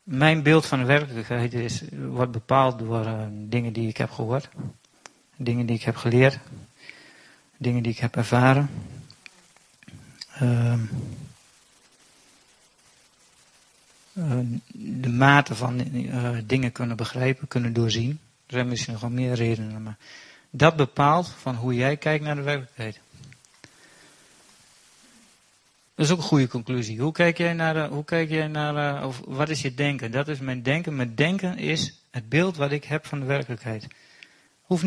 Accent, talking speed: Dutch, 145 wpm